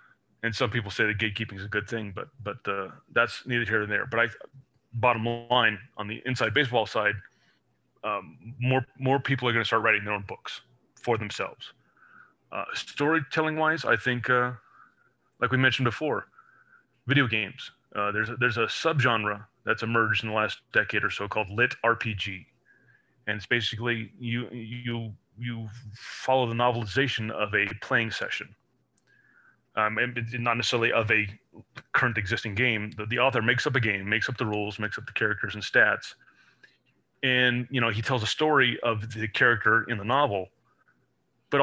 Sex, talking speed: male, 175 wpm